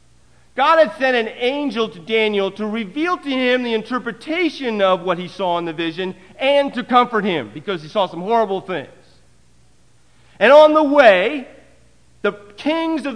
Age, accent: 50-69, American